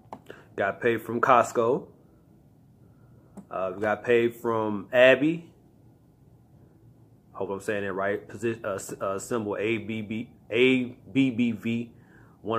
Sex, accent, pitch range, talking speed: male, American, 100-125 Hz, 105 wpm